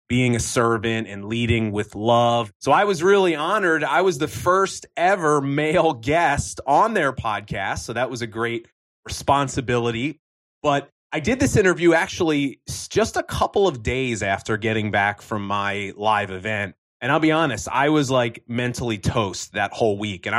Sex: male